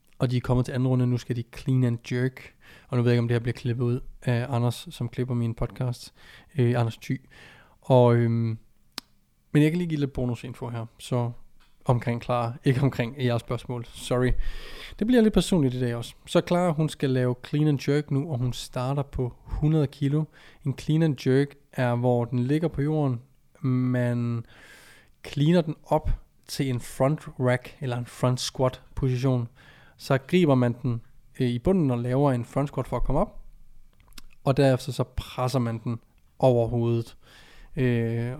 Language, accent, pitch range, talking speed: Danish, native, 120-140 Hz, 185 wpm